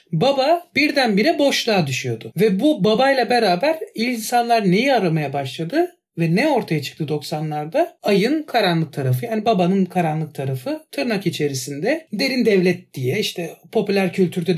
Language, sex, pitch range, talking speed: Turkish, male, 175-245 Hz, 130 wpm